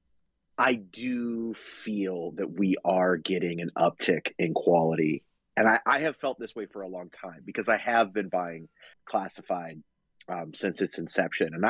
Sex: male